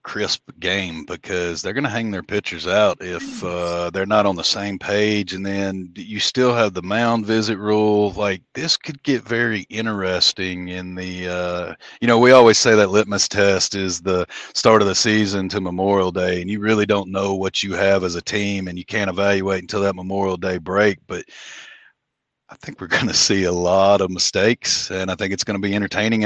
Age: 40-59